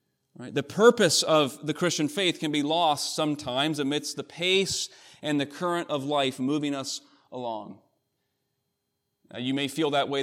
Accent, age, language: American, 30-49, English